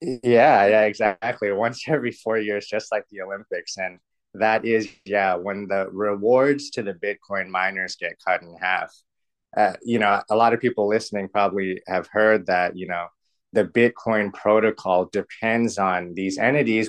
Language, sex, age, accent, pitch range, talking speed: English, male, 20-39, American, 95-115 Hz, 165 wpm